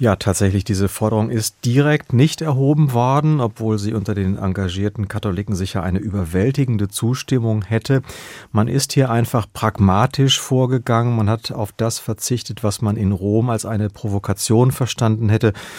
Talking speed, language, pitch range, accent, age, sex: 150 wpm, German, 105-130 Hz, German, 40-59, male